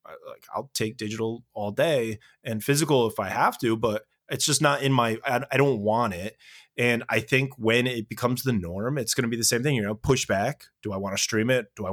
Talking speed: 245 wpm